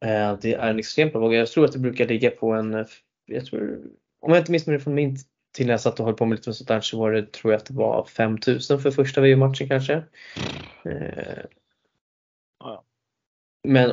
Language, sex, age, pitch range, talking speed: Swedish, male, 20-39, 110-135 Hz, 195 wpm